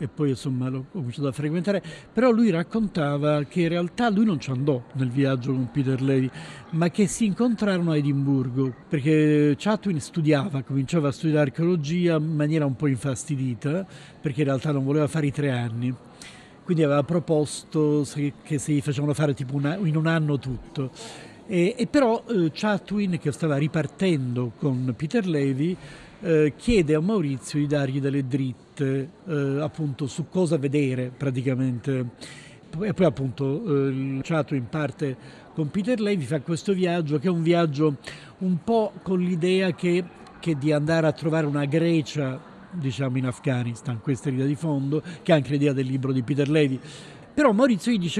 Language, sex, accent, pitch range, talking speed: Italian, male, native, 140-175 Hz, 170 wpm